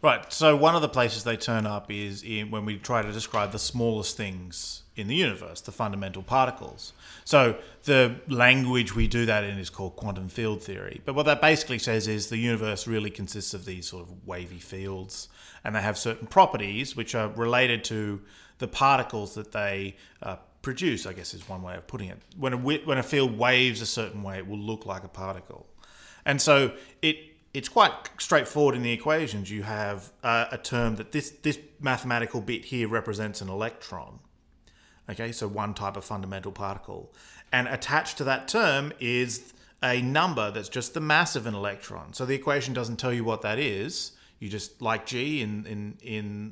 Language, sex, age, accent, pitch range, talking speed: English, male, 30-49, Australian, 100-125 Hz, 195 wpm